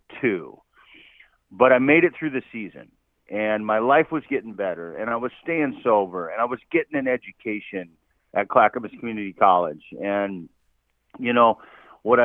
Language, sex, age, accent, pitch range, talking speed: English, male, 40-59, American, 100-125 Hz, 160 wpm